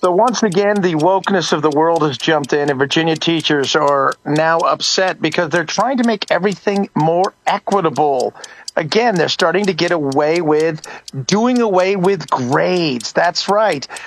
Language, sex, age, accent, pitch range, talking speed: English, male, 40-59, American, 160-200 Hz, 160 wpm